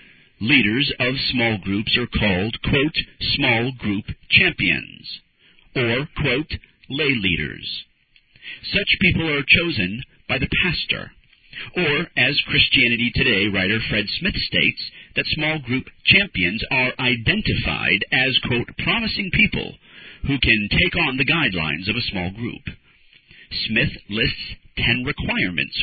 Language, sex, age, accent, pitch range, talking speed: English, male, 50-69, American, 105-145 Hz, 125 wpm